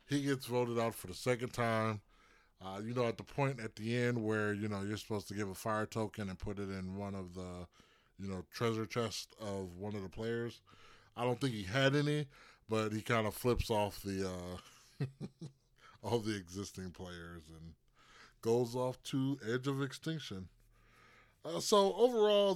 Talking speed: 190 wpm